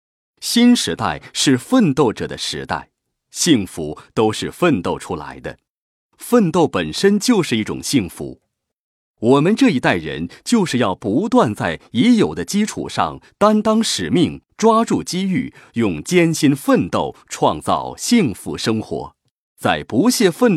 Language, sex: Chinese, male